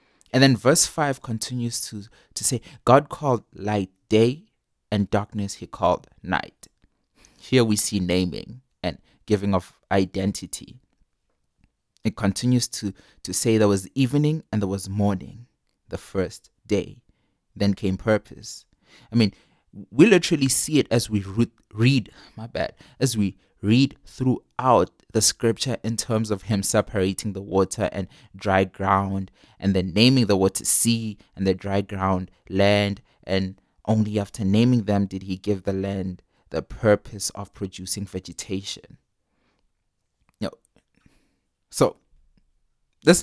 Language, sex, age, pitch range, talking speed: English, male, 20-39, 95-115 Hz, 135 wpm